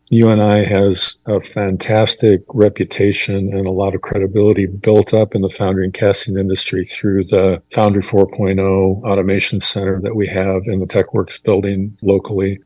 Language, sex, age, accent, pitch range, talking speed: English, male, 50-69, American, 95-105 Hz, 150 wpm